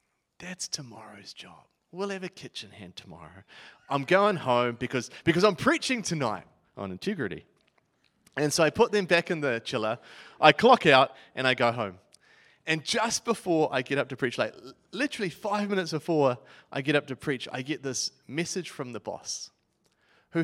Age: 30-49